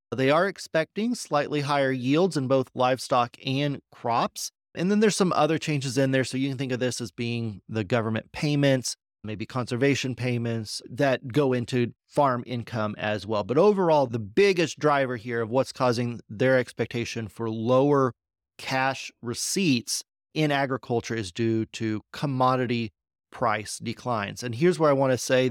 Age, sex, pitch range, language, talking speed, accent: 30-49, male, 120-145 Hz, English, 165 wpm, American